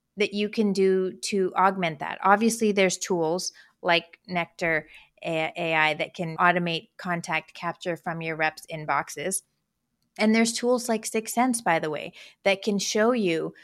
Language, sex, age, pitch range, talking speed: English, female, 30-49, 170-210 Hz, 155 wpm